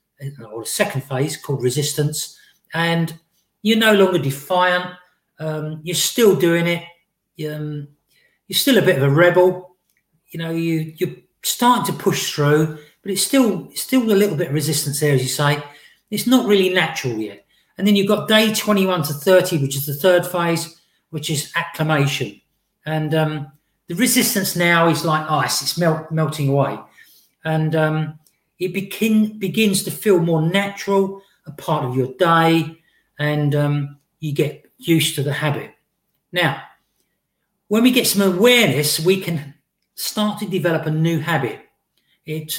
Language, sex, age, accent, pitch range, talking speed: English, male, 40-59, British, 150-190 Hz, 165 wpm